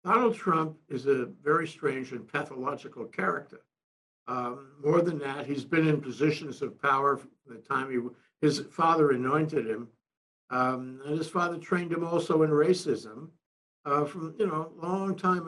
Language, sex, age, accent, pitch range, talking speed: English, male, 60-79, American, 130-170 Hz, 165 wpm